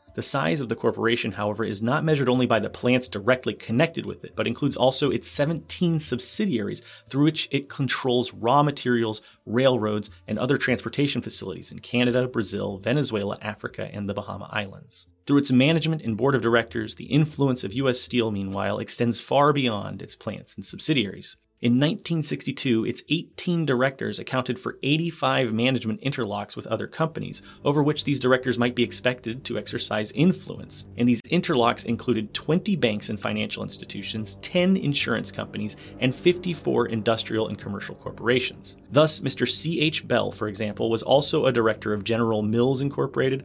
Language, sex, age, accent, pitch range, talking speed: English, male, 30-49, American, 110-140 Hz, 165 wpm